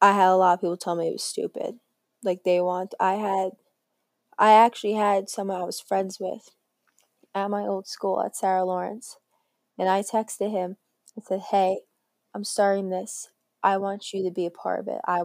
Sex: female